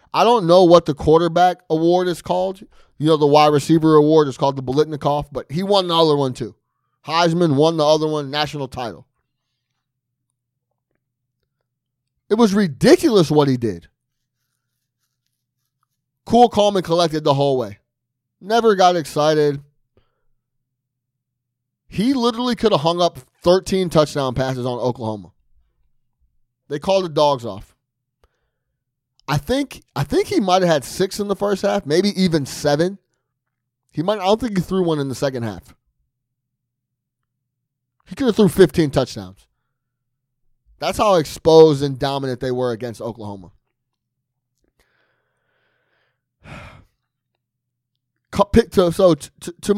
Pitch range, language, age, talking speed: 125-175 Hz, English, 30-49, 135 wpm